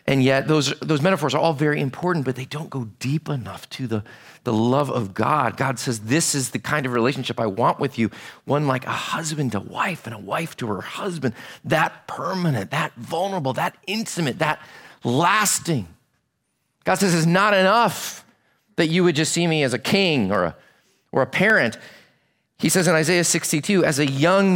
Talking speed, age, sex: 195 wpm, 40-59, male